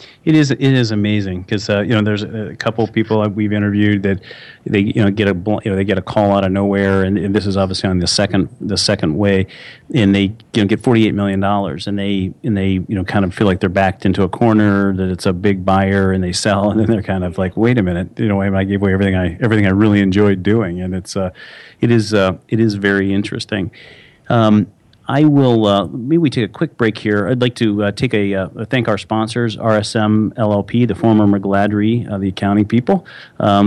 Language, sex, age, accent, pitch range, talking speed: English, male, 40-59, American, 95-110 Hz, 240 wpm